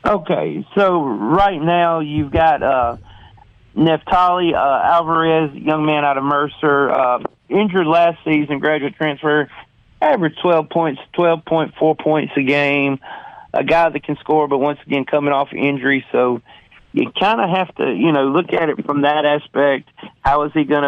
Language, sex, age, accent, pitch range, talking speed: English, male, 40-59, American, 135-150 Hz, 165 wpm